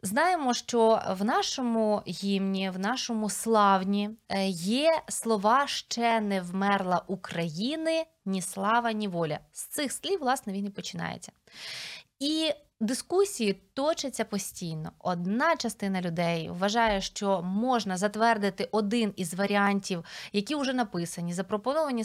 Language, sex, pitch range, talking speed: Ukrainian, female, 195-255 Hz, 115 wpm